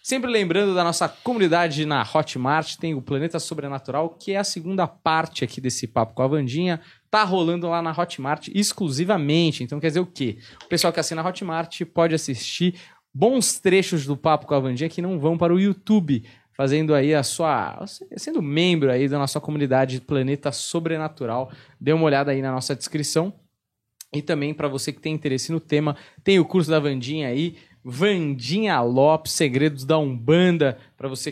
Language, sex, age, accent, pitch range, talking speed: Portuguese, male, 20-39, Brazilian, 140-175 Hz, 180 wpm